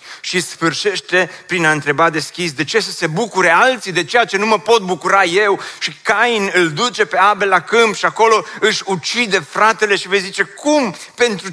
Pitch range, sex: 170-225 Hz, male